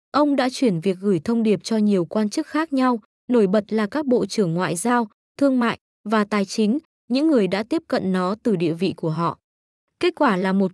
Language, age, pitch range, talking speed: Vietnamese, 20-39, 195-250 Hz, 230 wpm